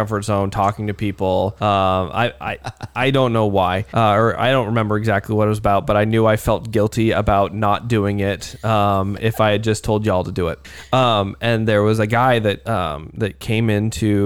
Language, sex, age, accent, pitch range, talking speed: English, male, 20-39, American, 100-115 Hz, 225 wpm